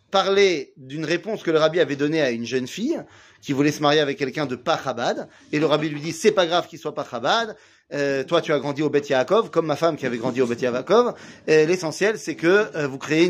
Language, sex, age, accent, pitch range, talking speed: French, male, 30-49, French, 140-195 Hz, 250 wpm